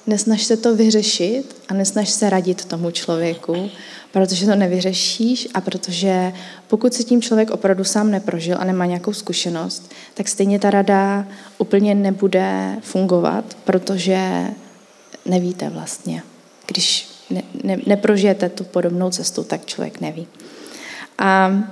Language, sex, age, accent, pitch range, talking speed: Czech, female, 20-39, native, 180-210 Hz, 130 wpm